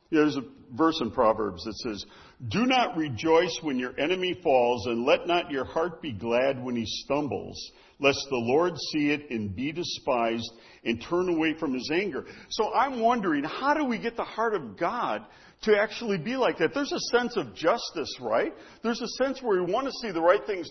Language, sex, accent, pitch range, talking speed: English, male, American, 150-250 Hz, 205 wpm